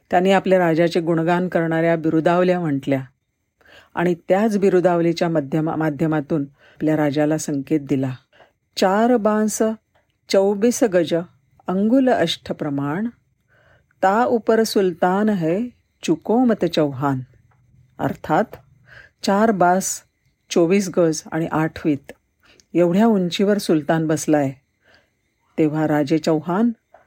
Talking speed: 55 wpm